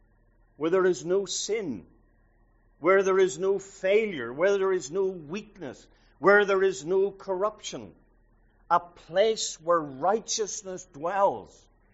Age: 50-69